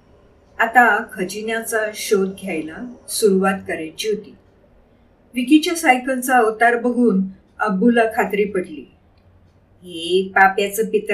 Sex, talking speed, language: female, 75 wpm, Marathi